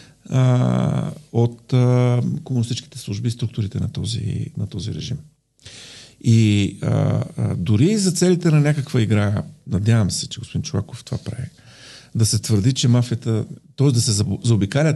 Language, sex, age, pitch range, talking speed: Bulgarian, male, 50-69, 110-140 Hz, 145 wpm